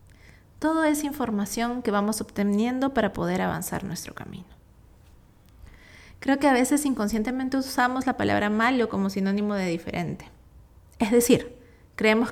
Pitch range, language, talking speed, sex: 190-240 Hz, Spanish, 130 wpm, female